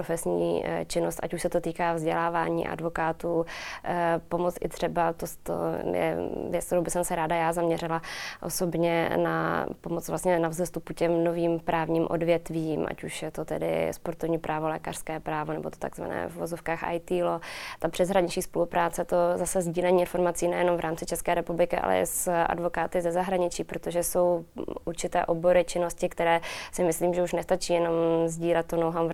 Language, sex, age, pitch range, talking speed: Czech, female, 20-39, 165-175 Hz, 165 wpm